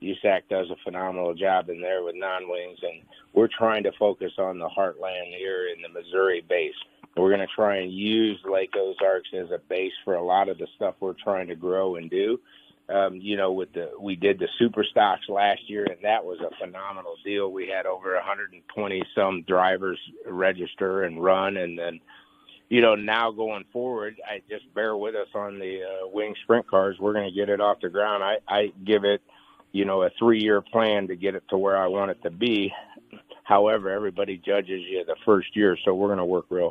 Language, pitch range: English, 95-115 Hz